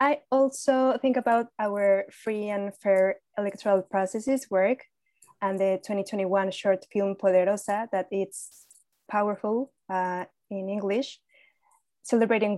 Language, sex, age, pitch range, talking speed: English, female, 20-39, 190-215 Hz, 115 wpm